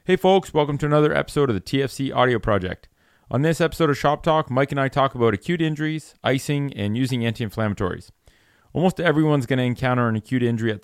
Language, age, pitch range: English, 30-49, 110-140 Hz